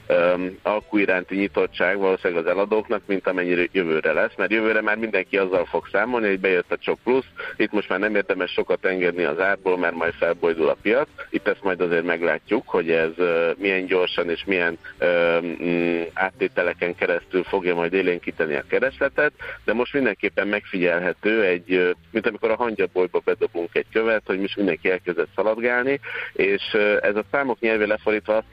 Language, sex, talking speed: Hungarian, male, 165 wpm